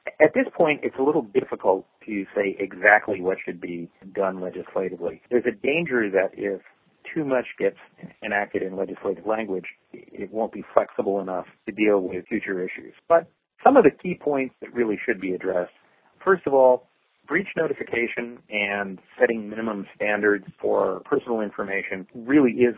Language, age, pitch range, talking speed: English, 40-59, 100-125 Hz, 165 wpm